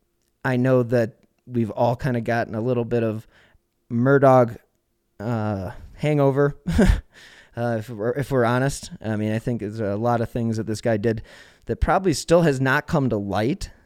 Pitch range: 110-140 Hz